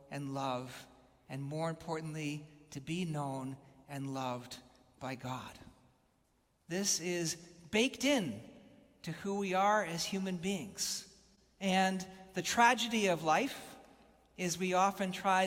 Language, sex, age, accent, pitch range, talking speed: English, male, 50-69, American, 140-195 Hz, 125 wpm